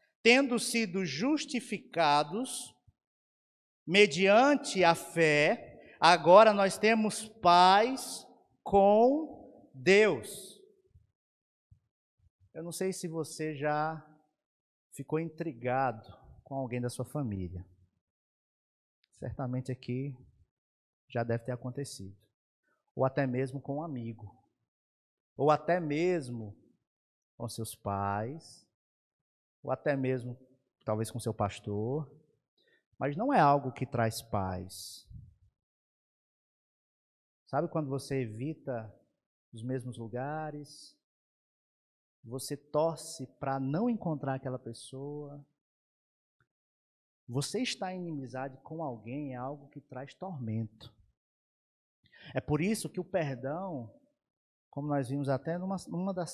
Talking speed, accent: 100 wpm, Brazilian